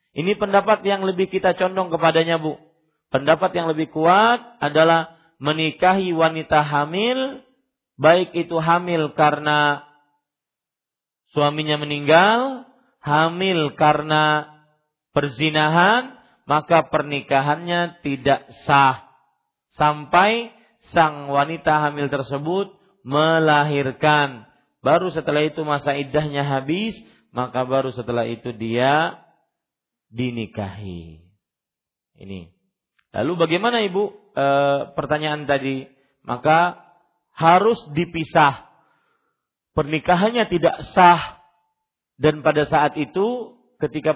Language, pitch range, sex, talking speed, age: Malay, 140-175 Hz, male, 90 wpm, 40-59